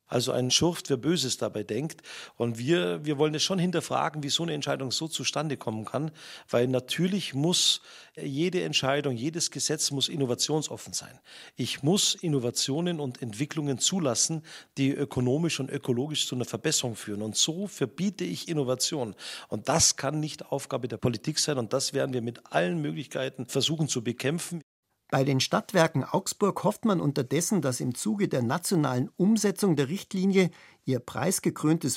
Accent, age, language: German, 50-69, German